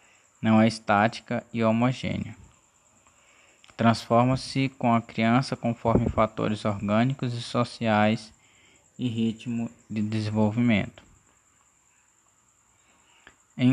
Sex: male